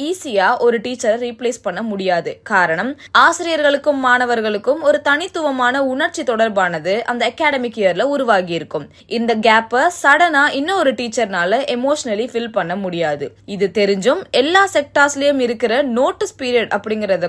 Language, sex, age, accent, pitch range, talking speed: Tamil, female, 20-39, native, 210-290 Hz, 55 wpm